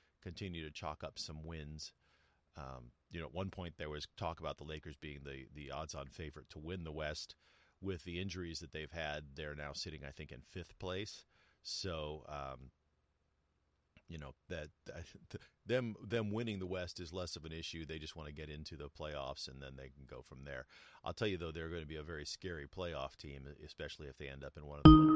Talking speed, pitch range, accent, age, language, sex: 225 wpm, 75-95 Hz, American, 40-59, English, male